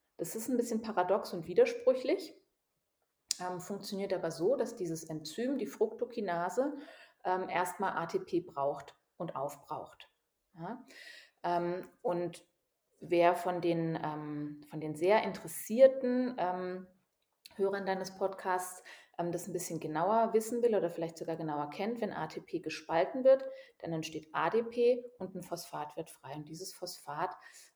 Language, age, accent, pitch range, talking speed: German, 30-49, German, 170-235 Hz, 140 wpm